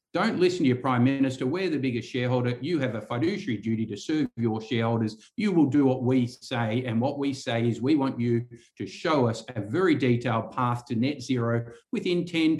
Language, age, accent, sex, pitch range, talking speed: English, 50-69, Australian, male, 115-135 Hz, 215 wpm